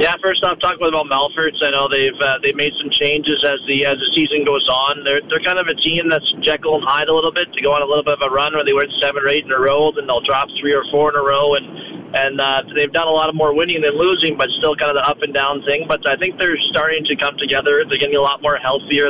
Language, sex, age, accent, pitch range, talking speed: English, male, 30-49, American, 140-160 Hz, 300 wpm